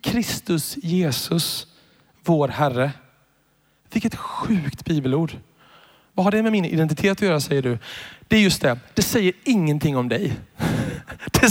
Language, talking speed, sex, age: Swedish, 140 wpm, male, 30-49